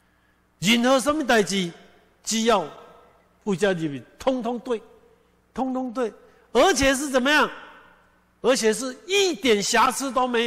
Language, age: Chinese, 60-79